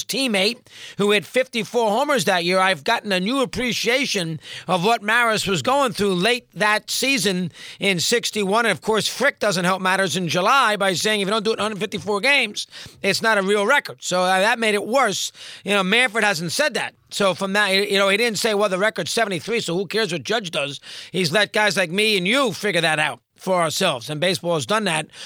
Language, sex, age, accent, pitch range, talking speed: English, male, 40-59, American, 185-230 Hz, 220 wpm